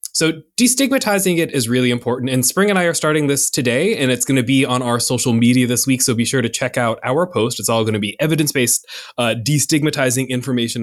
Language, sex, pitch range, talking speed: English, male, 120-175 Hz, 240 wpm